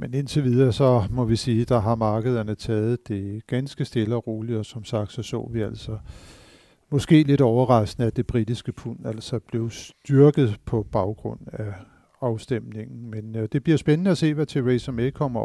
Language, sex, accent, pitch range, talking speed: Danish, male, native, 110-130 Hz, 185 wpm